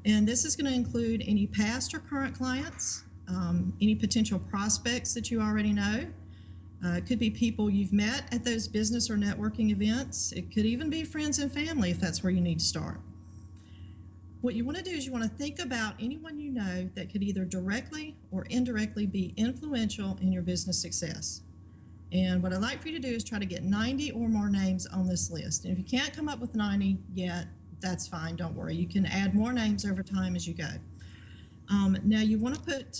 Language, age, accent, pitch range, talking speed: English, 40-59, American, 175-230 Hz, 215 wpm